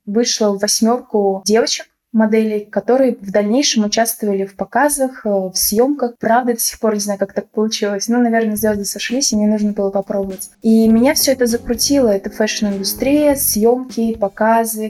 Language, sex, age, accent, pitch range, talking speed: Russian, female, 20-39, native, 210-240 Hz, 155 wpm